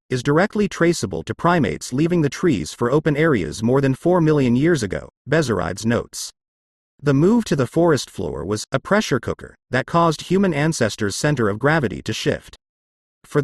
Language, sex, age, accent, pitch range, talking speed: English, male, 40-59, American, 115-160 Hz, 175 wpm